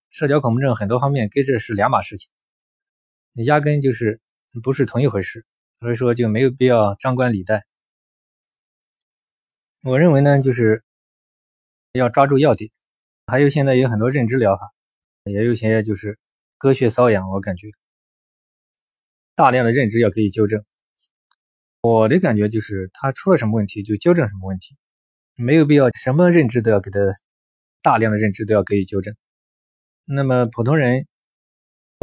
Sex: male